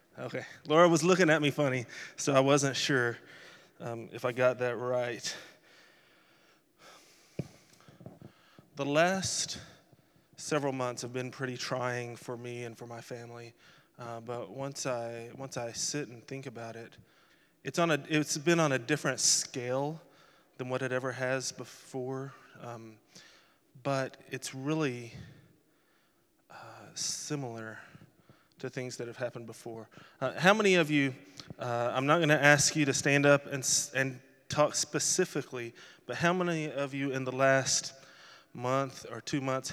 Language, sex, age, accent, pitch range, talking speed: English, male, 20-39, American, 120-145 Hz, 150 wpm